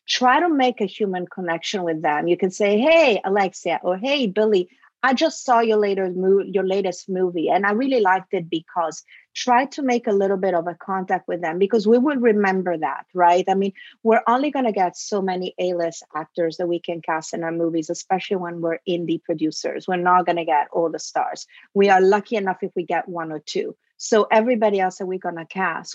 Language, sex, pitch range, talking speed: English, female, 180-225 Hz, 220 wpm